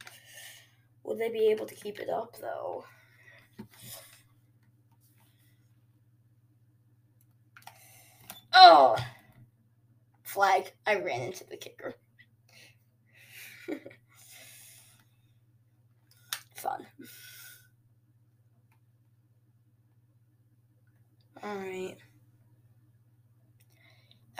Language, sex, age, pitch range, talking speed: English, female, 10-29, 115-125 Hz, 45 wpm